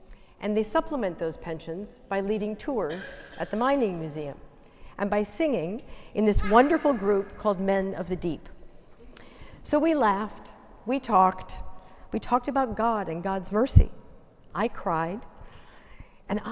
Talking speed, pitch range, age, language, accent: 140 wpm, 185-245 Hz, 50-69, English, American